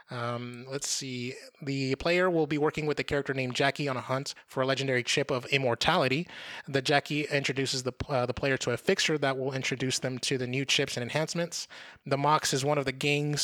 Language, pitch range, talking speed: English, 130-145 Hz, 220 wpm